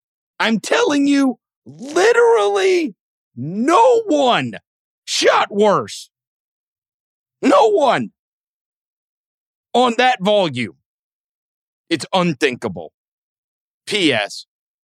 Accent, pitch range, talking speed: American, 115-155 Hz, 65 wpm